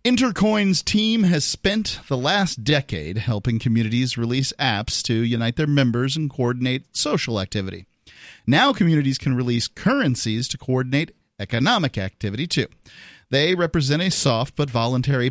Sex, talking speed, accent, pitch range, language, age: male, 135 wpm, American, 120-150 Hz, English, 40-59